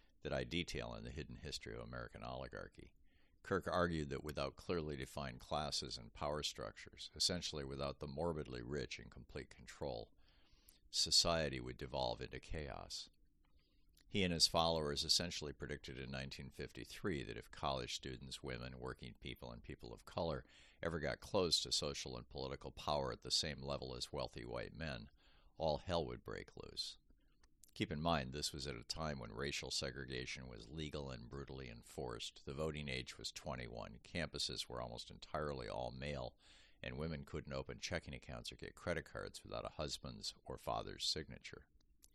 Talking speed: 165 wpm